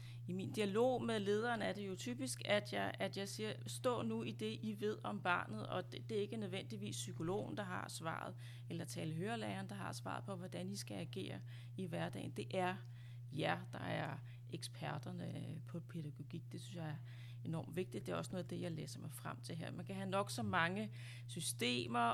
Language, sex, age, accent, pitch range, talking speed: Danish, female, 30-49, native, 110-165 Hz, 210 wpm